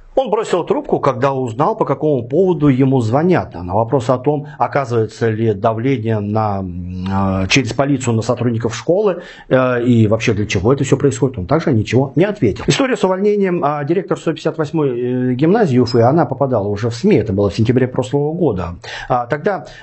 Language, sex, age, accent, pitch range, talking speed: Russian, male, 40-59, native, 115-155 Hz, 160 wpm